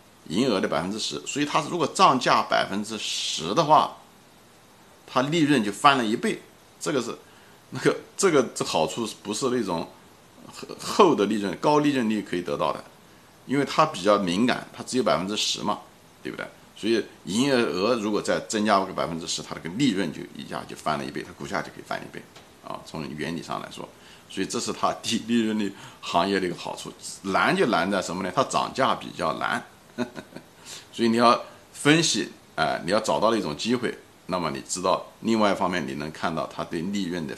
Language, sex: Chinese, male